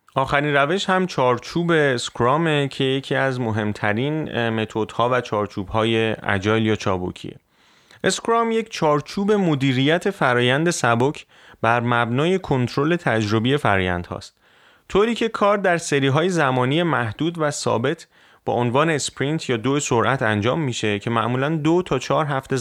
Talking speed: 135 wpm